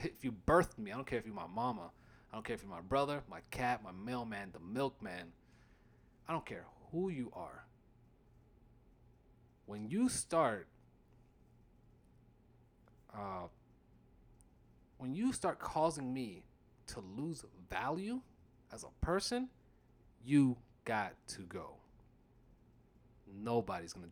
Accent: American